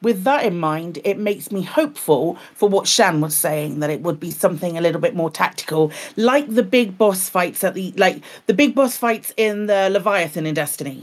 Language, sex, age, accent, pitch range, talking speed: English, female, 40-59, British, 160-200 Hz, 220 wpm